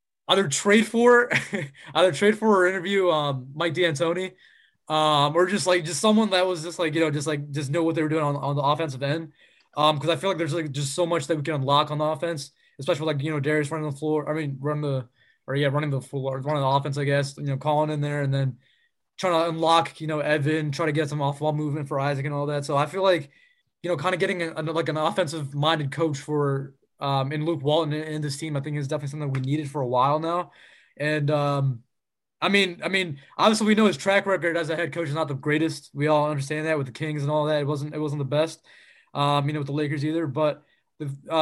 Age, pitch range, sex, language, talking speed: 20-39, 145-170 Hz, male, English, 260 wpm